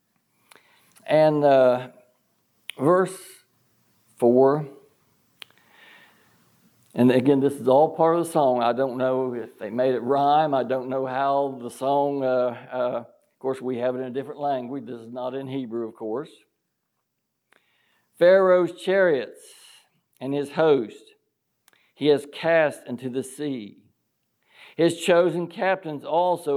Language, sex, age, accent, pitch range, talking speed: English, male, 60-79, American, 130-170 Hz, 135 wpm